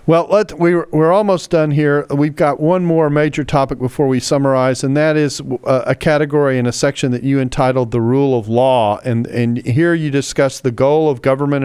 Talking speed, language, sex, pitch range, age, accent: 200 wpm, English, male, 130-150 Hz, 40-59, American